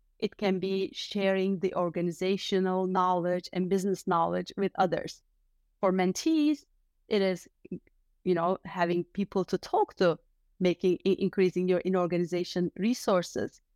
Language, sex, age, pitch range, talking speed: English, female, 30-49, 190-245 Hz, 125 wpm